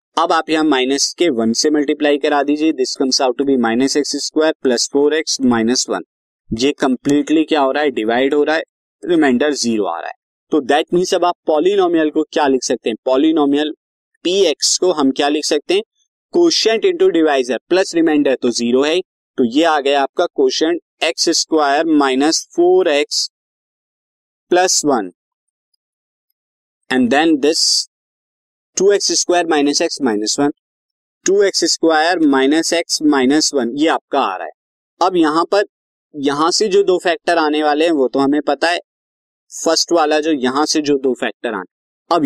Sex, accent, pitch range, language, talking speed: male, native, 135-175 Hz, Hindi, 135 wpm